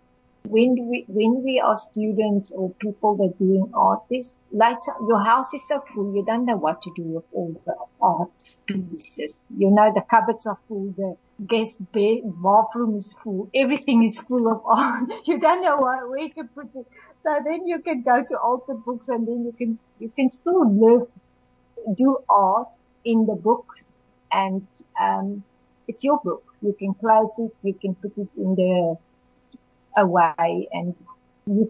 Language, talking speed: English, 180 wpm